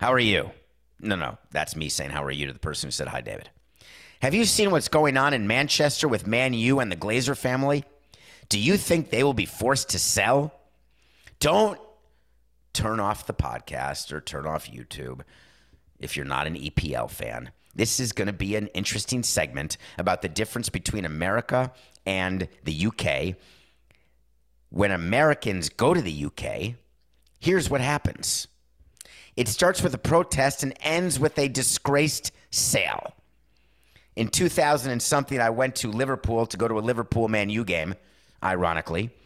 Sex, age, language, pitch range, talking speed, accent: male, 50-69, English, 95-145 Hz, 165 wpm, American